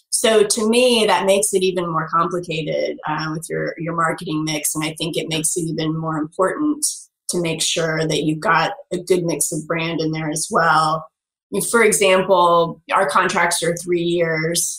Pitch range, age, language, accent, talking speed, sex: 160-190 Hz, 30-49, English, American, 185 wpm, female